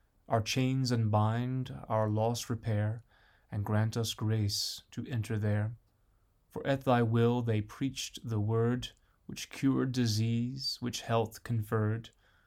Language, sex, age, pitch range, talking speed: English, male, 20-39, 100-120 Hz, 130 wpm